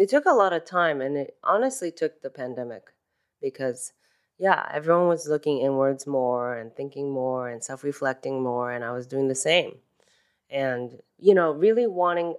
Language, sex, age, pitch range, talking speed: English, female, 20-39, 135-165 Hz, 175 wpm